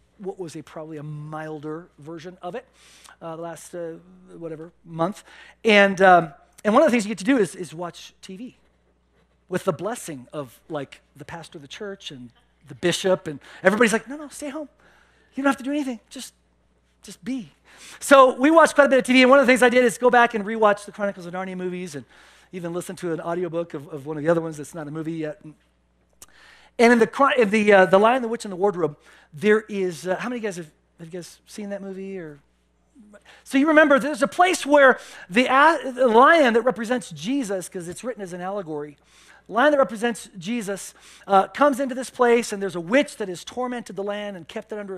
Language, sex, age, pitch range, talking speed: English, male, 40-59, 170-250 Hz, 235 wpm